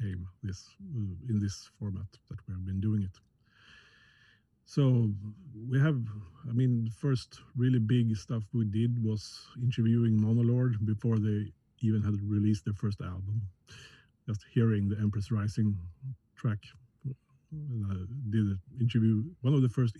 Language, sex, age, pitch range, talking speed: English, male, 50-69, 105-125 Hz, 140 wpm